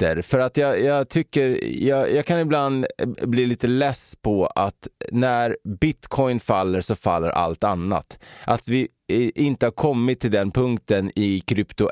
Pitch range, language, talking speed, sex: 95-125 Hz, Swedish, 155 wpm, male